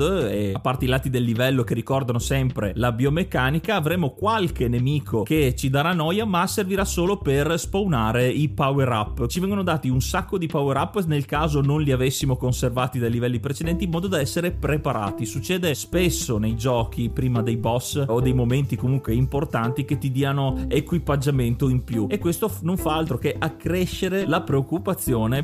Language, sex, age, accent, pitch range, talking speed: Italian, male, 30-49, native, 125-165 Hz, 180 wpm